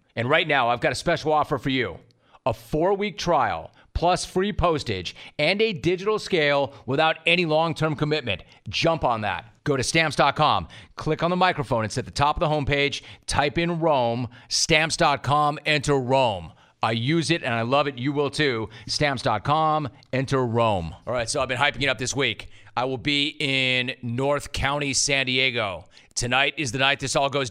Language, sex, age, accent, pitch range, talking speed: English, male, 30-49, American, 125-155 Hz, 185 wpm